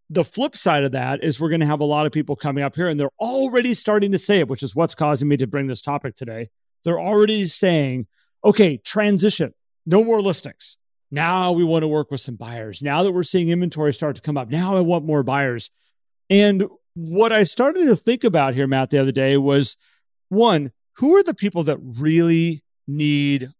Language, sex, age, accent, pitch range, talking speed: English, male, 40-59, American, 140-185 Hz, 215 wpm